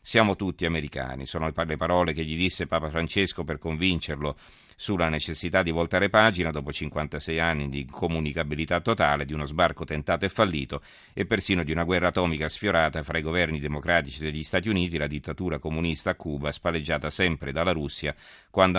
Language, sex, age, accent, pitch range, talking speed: Italian, male, 40-59, native, 75-95 Hz, 175 wpm